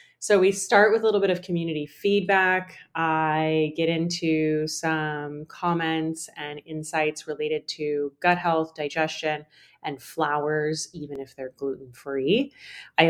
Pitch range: 150-170 Hz